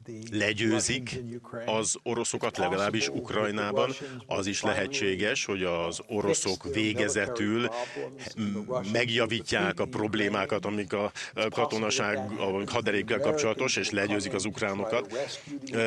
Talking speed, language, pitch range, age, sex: 90 wpm, Hungarian, 105-120 Hz, 50-69, male